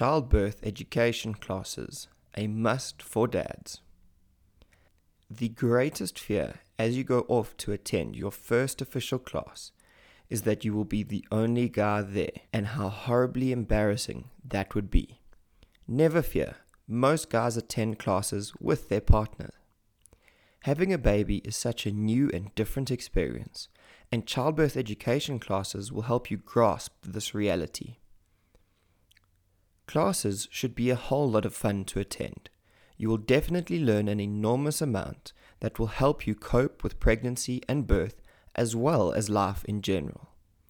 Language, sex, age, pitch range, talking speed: English, male, 20-39, 100-125 Hz, 145 wpm